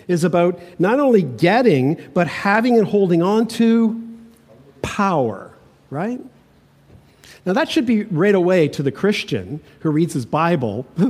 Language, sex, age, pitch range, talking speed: English, male, 50-69, 150-205 Hz, 140 wpm